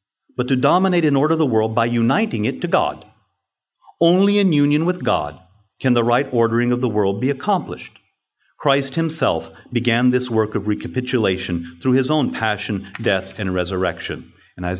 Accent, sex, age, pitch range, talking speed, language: American, male, 40-59, 95-125 Hz, 170 wpm, English